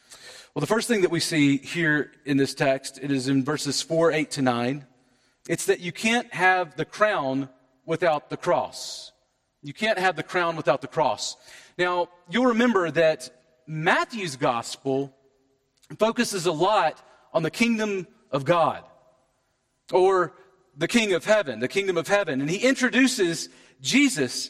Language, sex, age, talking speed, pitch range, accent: English, male, 40-59, 155 wpm, 140-225 Hz, American